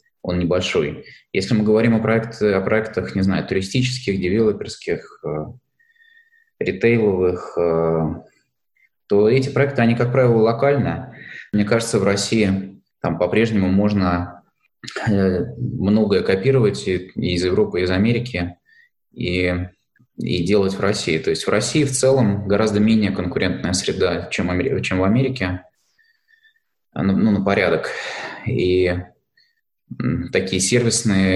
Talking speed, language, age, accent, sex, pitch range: 110 wpm, Russian, 20-39, native, male, 90-120 Hz